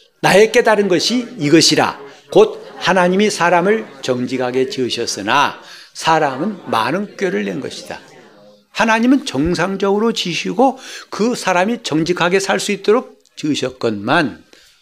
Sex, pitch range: male, 135-205 Hz